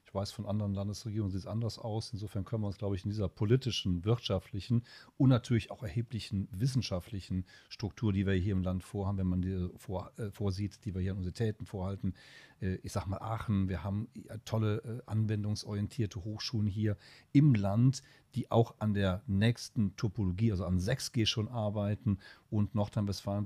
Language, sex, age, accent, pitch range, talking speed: German, male, 40-59, German, 100-120 Hz, 175 wpm